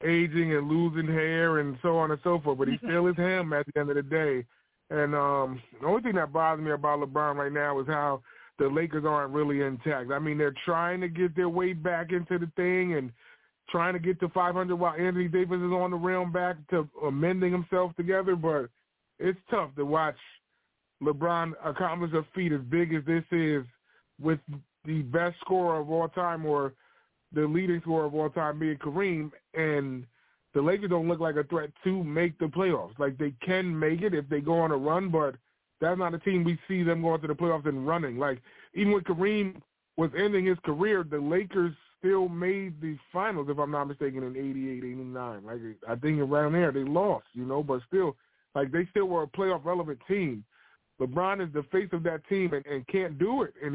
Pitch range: 145-180 Hz